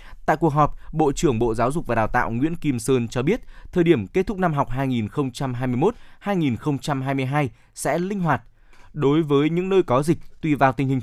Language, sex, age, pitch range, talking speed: Vietnamese, male, 20-39, 120-155 Hz, 195 wpm